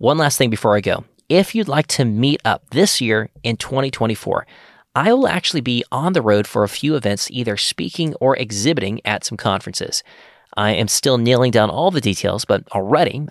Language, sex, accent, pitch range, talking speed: English, male, American, 105-145 Hz, 200 wpm